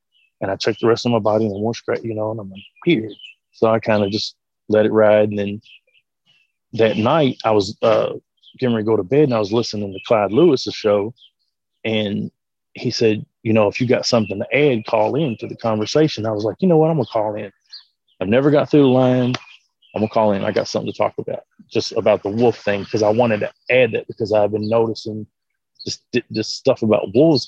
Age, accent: 30-49, American